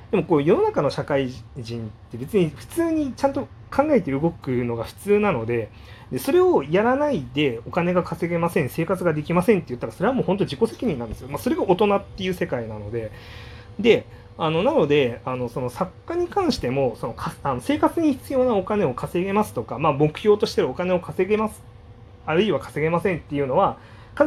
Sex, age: male, 30-49